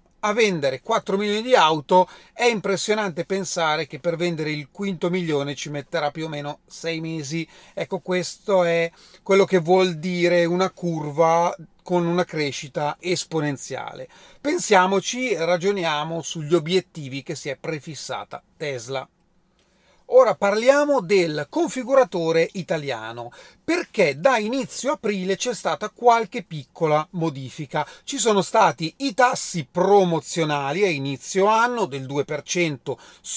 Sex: male